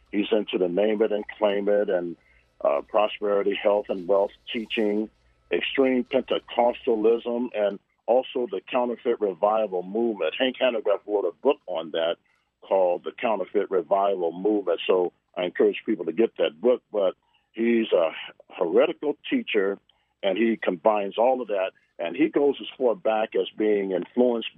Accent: American